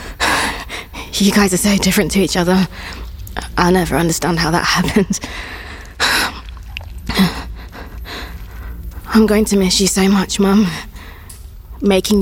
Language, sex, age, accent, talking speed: English, female, 20-39, British, 115 wpm